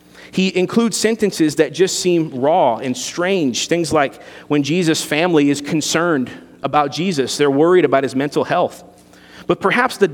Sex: male